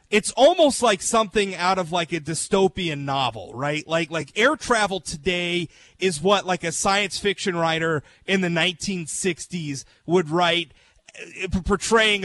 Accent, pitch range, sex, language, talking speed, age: American, 160-210 Hz, male, English, 145 wpm, 30-49